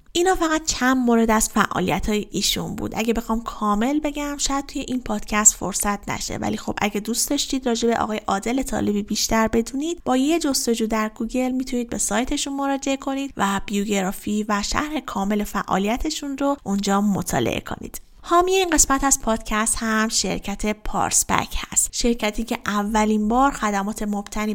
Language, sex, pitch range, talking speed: Persian, female, 205-255 Hz, 160 wpm